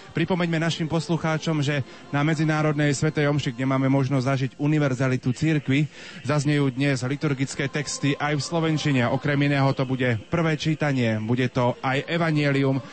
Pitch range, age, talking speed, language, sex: 125-150 Hz, 30-49, 145 wpm, Slovak, male